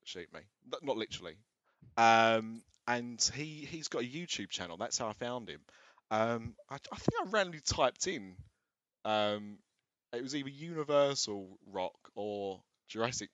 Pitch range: 100-115 Hz